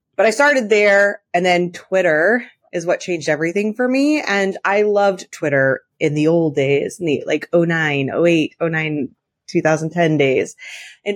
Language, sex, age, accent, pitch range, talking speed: English, female, 30-49, American, 155-210 Hz, 160 wpm